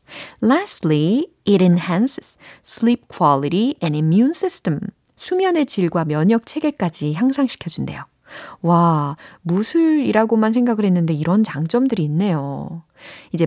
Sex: female